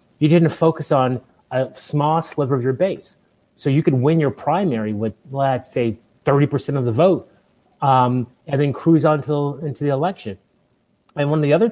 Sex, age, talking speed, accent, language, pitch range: male, 30-49, 190 wpm, American, English, 115-150 Hz